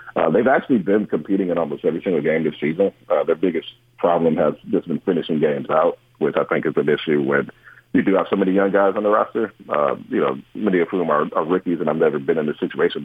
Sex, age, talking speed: male, 40-59, 255 wpm